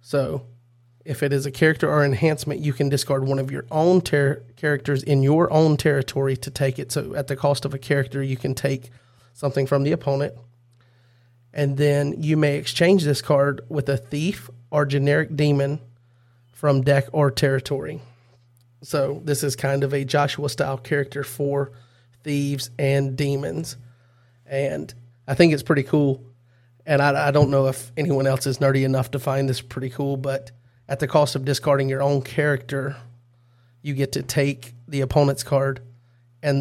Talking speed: 175 wpm